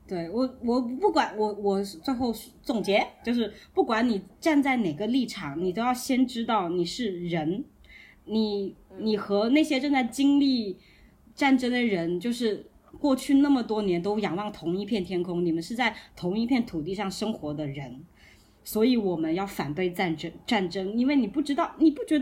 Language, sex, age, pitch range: Chinese, female, 20-39, 200-275 Hz